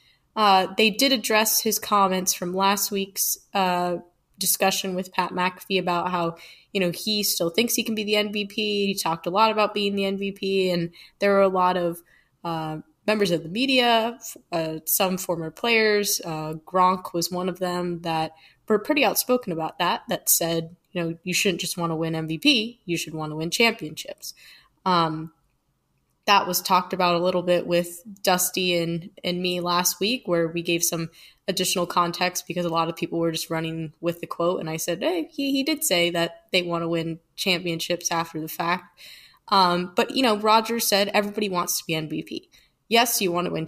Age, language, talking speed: 20-39, English, 195 wpm